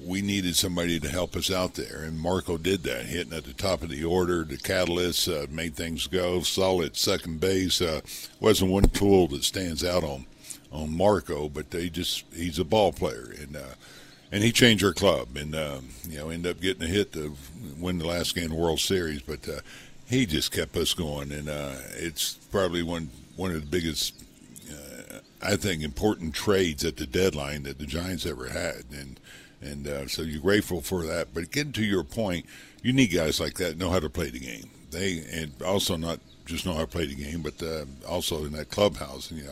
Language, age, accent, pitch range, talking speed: English, 60-79, American, 75-90 Hz, 215 wpm